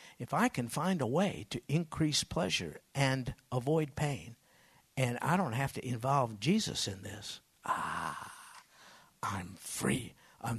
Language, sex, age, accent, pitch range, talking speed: English, male, 60-79, American, 120-155 Hz, 140 wpm